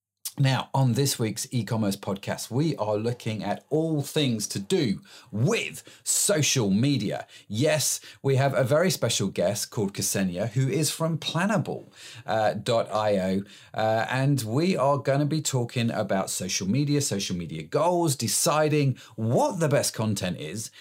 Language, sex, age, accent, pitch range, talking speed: English, male, 40-59, British, 110-155 Hz, 145 wpm